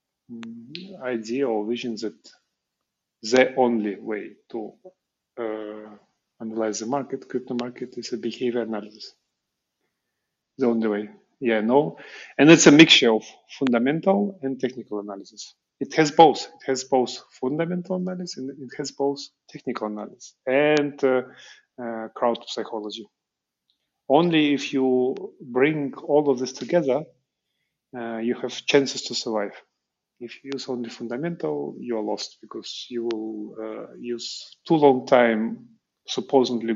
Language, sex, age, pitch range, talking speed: English, male, 30-49, 115-145 Hz, 135 wpm